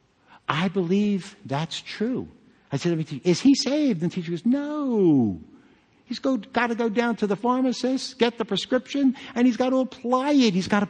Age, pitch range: 60-79, 165-240 Hz